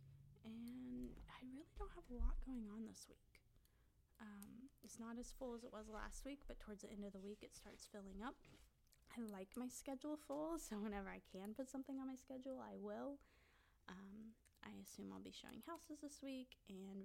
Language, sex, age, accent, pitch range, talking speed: English, female, 20-39, American, 200-255 Hz, 205 wpm